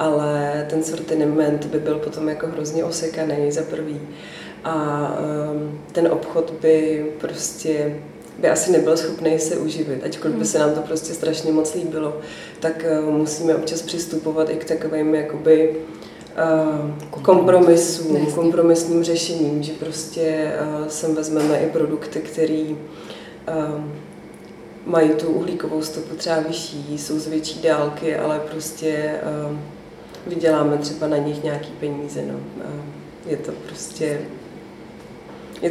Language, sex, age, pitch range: Czech, female, 30-49, 150-160 Hz